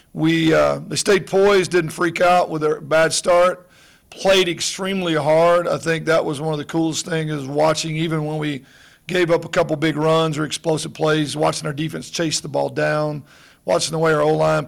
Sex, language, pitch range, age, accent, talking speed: male, English, 150-165 Hz, 40-59, American, 205 wpm